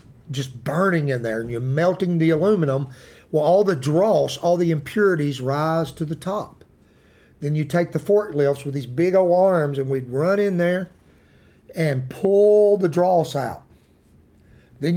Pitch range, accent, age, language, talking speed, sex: 135-175 Hz, American, 50-69, English, 165 wpm, male